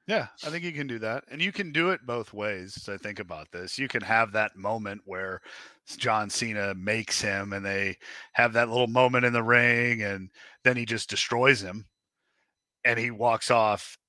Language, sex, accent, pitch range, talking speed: English, male, American, 110-140 Hz, 205 wpm